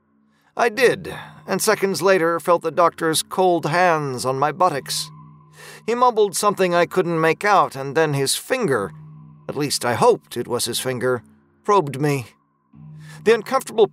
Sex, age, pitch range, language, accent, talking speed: male, 40-59, 120-190 Hz, English, American, 155 wpm